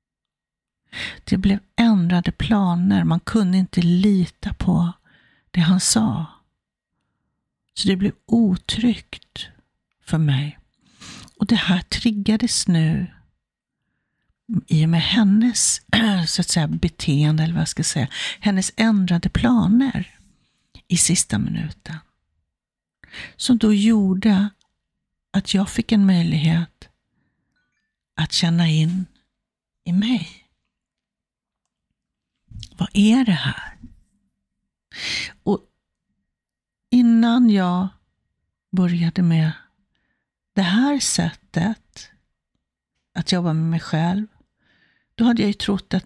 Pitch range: 170-220 Hz